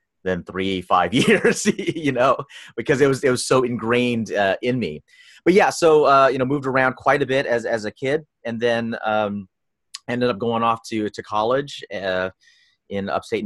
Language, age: English, 30-49